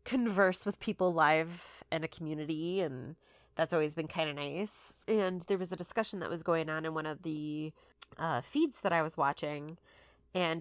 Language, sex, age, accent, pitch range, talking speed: English, female, 30-49, American, 155-190 Hz, 190 wpm